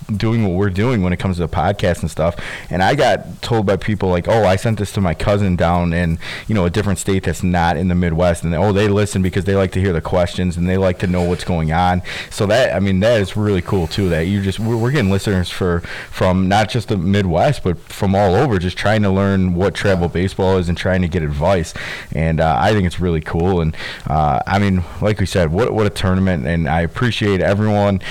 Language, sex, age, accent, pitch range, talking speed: English, male, 20-39, American, 85-100 Hz, 250 wpm